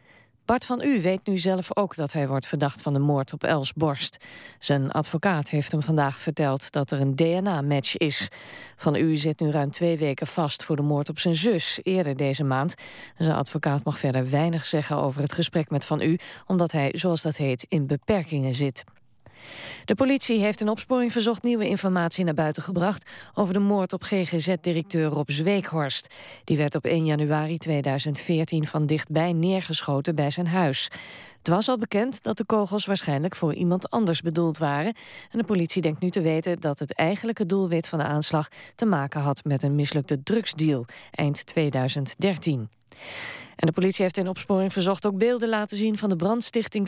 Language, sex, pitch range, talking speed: Dutch, female, 150-195 Hz, 185 wpm